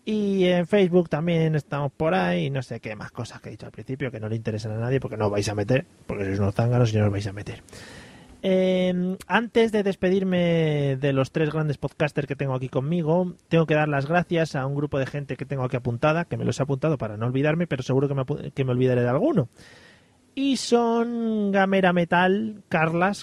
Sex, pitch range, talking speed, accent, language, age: male, 135-180 Hz, 230 wpm, Spanish, Spanish, 30-49